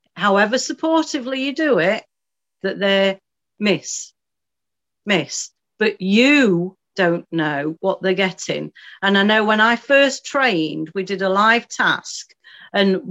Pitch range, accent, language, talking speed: 180-230 Hz, British, English, 135 wpm